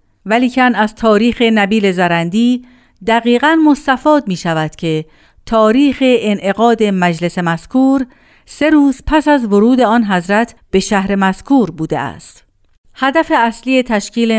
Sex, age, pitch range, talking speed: female, 50-69, 180-230 Hz, 125 wpm